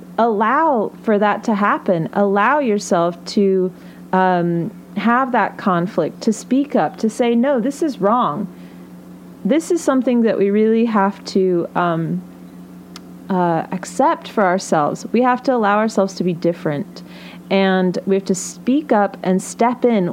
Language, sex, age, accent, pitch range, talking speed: English, female, 30-49, American, 175-210 Hz, 150 wpm